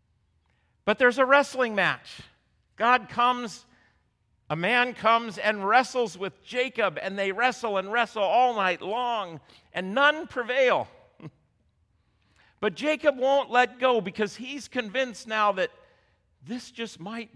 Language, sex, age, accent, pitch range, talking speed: English, male, 50-69, American, 165-250 Hz, 130 wpm